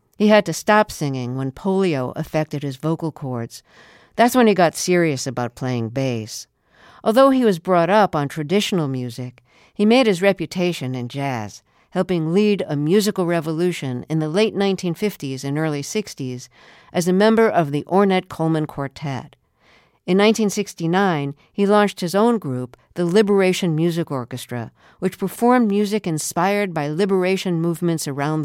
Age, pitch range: 50-69, 145-195 Hz